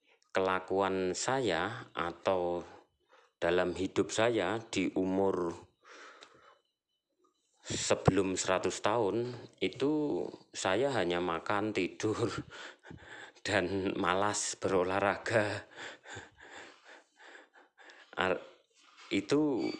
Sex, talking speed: male, 60 wpm